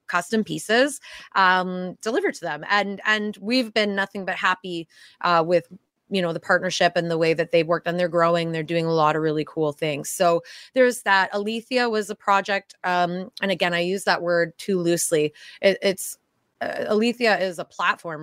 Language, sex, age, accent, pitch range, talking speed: English, female, 20-39, American, 170-210 Hz, 190 wpm